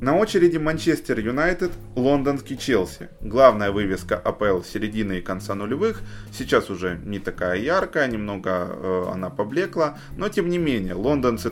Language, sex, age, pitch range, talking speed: Ukrainian, male, 20-39, 100-140 Hz, 140 wpm